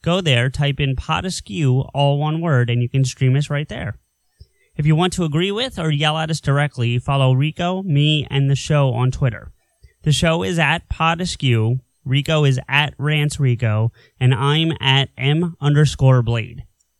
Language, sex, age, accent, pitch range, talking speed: English, male, 30-49, American, 130-155 Hz, 175 wpm